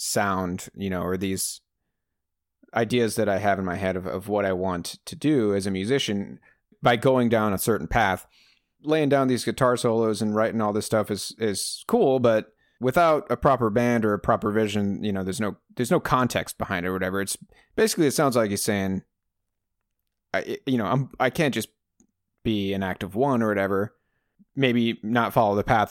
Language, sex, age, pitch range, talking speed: English, male, 30-49, 100-125 Hz, 200 wpm